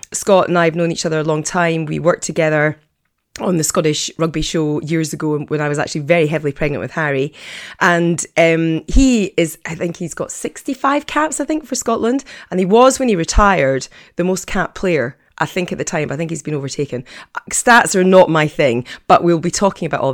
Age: 30-49